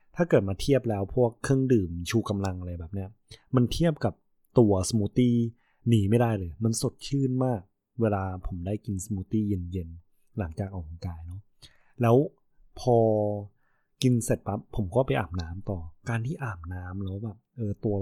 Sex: male